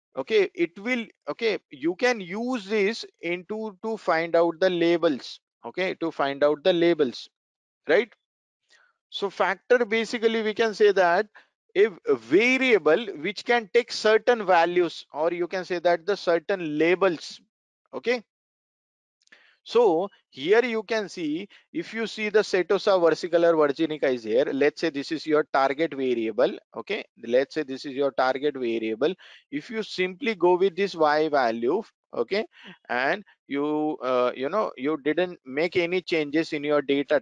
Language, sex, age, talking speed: English, male, 50-69, 155 wpm